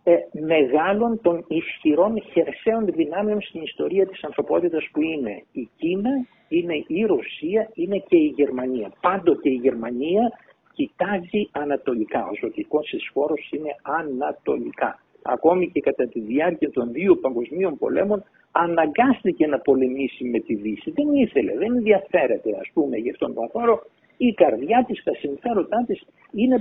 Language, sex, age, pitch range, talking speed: Greek, male, 60-79, 175-255 Hz, 140 wpm